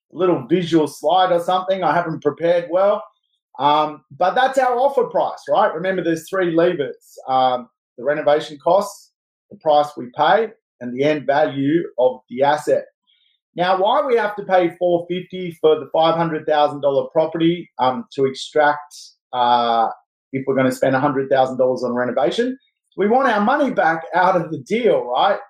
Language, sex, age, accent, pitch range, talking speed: English, male, 30-49, Australian, 130-180 Hz, 165 wpm